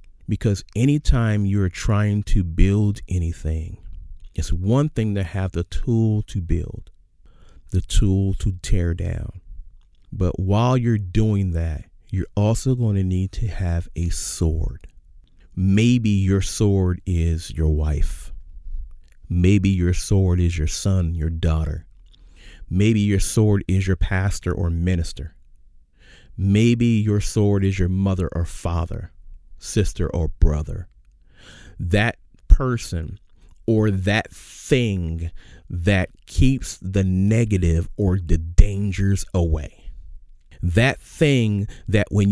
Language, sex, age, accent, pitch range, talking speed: English, male, 40-59, American, 85-105 Hz, 120 wpm